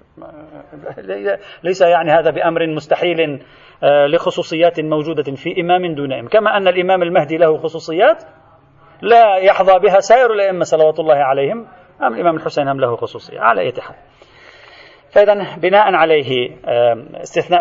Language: Arabic